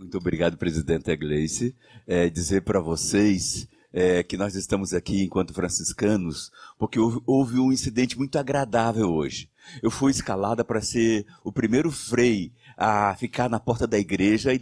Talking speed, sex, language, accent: 155 wpm, male, Portuguese, Brazilian